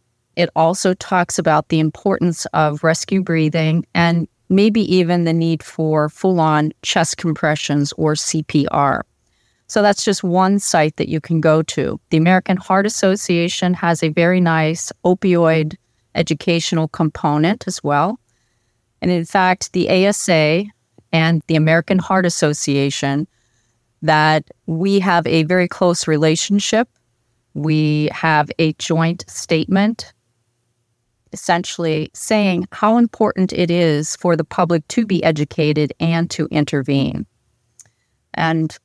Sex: female